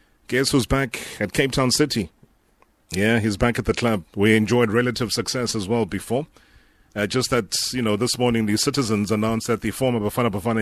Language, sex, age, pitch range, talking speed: English, male, 30-49, 105-125 Hz, 200 wpm